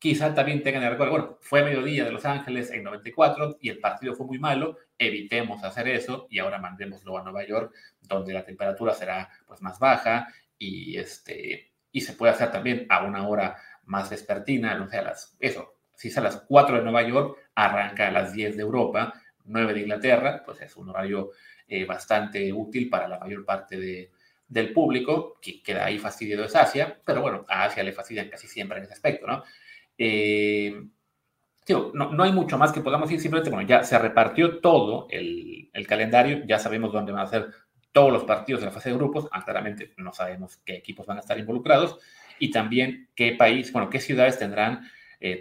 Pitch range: 105-140 Hz